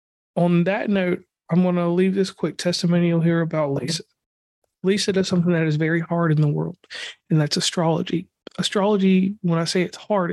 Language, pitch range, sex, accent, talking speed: English, 165-190 Hz, male, American, 185 wpm